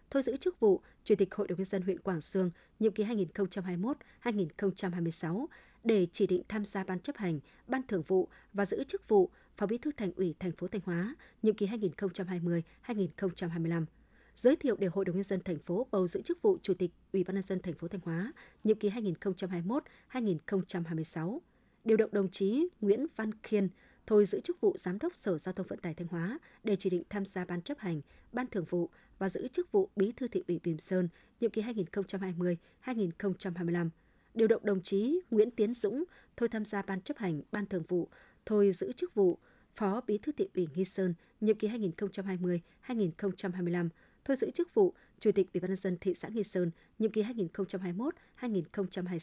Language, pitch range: Vietnamese, 180-225 Hz